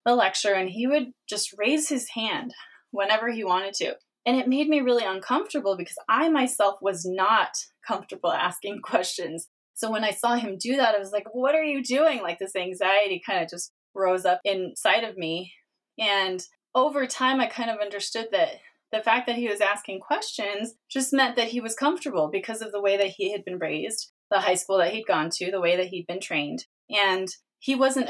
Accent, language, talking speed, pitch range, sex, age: American, English, 210 wpm, 185-250 Hz, female, 20-39